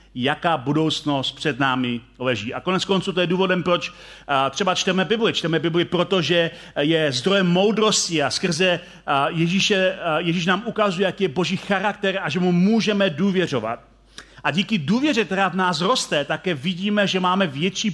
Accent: native